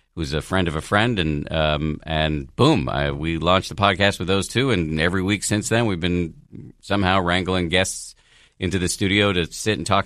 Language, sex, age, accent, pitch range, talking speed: English, male, 50-69, American, 75-95 Hz, 210 wpm